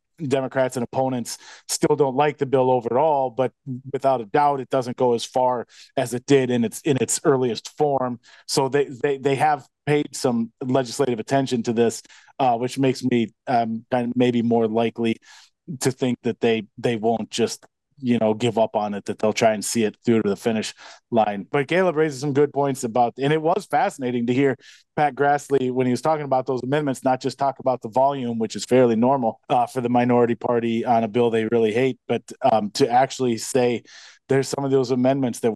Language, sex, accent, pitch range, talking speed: English, male, American, 120-140 Hz, 215 wpm